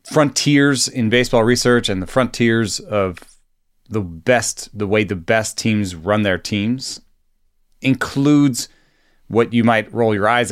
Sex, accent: male, American